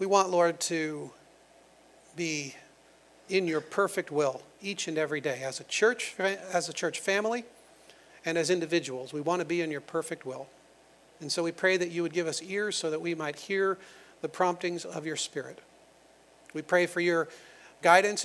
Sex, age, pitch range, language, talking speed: male, 40-59, 150-185 Hz, English, 185 wpm